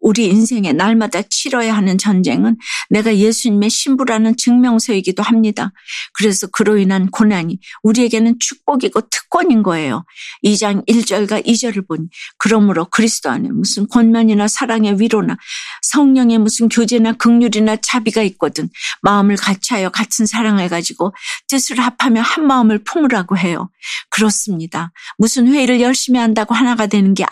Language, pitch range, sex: Korean, 195-235 Hz, female